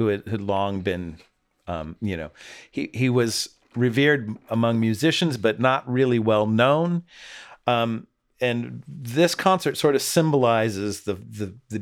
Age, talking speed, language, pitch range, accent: 40-59, 140 wpm, English, 95-120 Hz, American